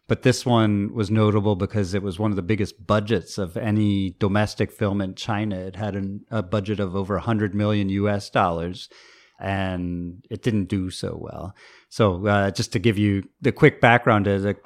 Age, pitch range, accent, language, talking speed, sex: 40-59, 95-110 Hz, American, English, 190 wpm, male